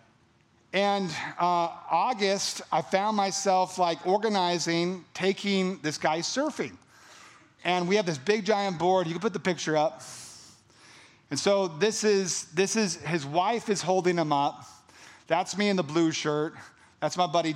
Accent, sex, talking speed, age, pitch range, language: American, male, 155 wpm, 40-59, 150-195 Hz, English